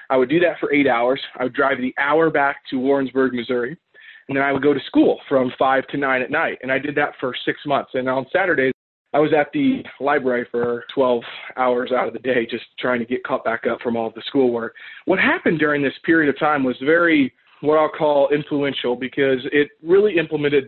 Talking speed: 230 wpm